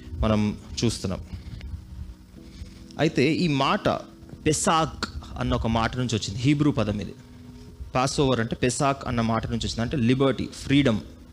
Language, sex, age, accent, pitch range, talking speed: Telugu, male, 30-49, native, 100-135 Hz, 125 wpm